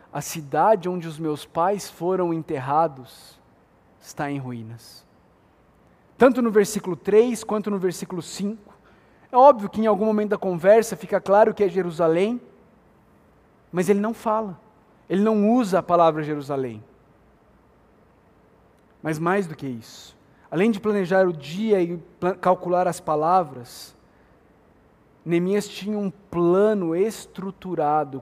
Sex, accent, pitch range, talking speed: male, Brazilian, 145-205 Hz, 130 wpm